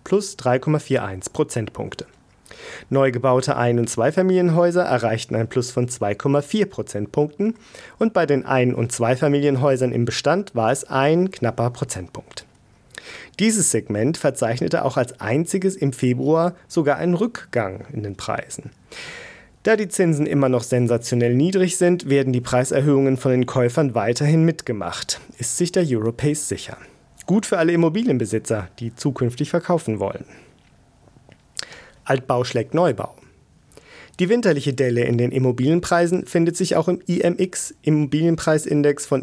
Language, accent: German, German